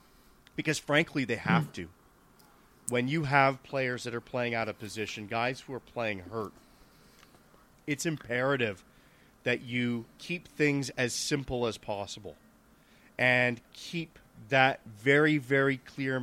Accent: American